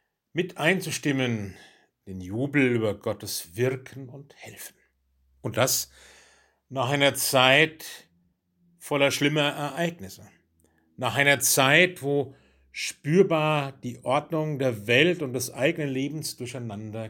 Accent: German